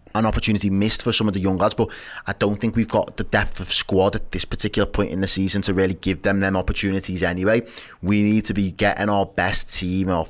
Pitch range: 90-100 Hz